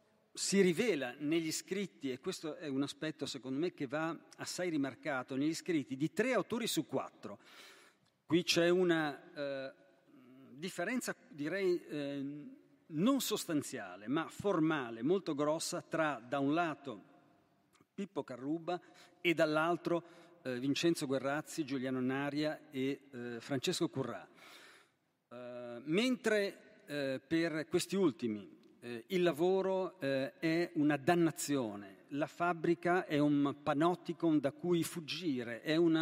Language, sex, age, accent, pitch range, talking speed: Italian, male, 50-69, native, 140-175 Hz, 125 wpm